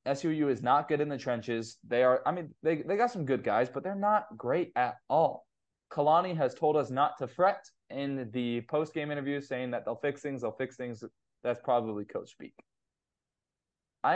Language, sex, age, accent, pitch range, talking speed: English, male, 20-39, American, 120-155 Hz, 205 wpm